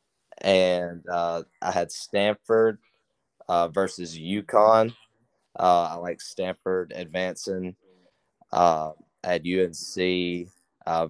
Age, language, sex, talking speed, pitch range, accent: 20-39, English, male, 90 wpm, 90-95 Hz, American